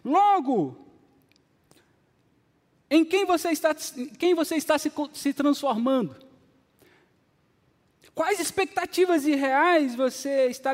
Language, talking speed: Portuguese, 90 wpm